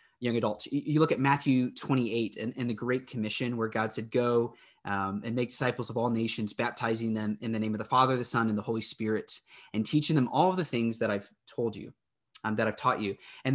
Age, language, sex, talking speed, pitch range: 20-39, English, male, 240 wpm, 115-155 Hz